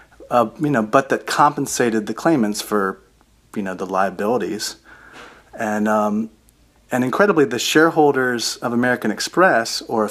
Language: English